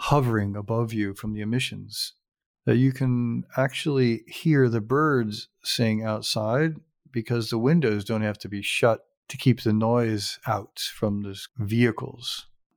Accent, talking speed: American, 145 wpm